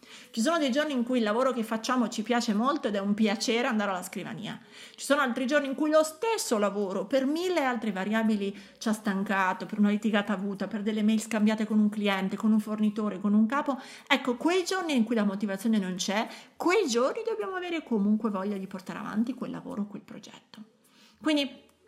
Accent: native